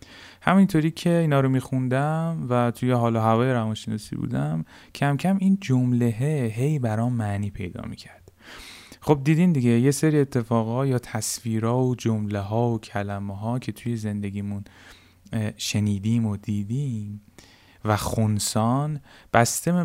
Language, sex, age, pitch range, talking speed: Persian, male, 10-29, 105-140 Hz, 135 wpm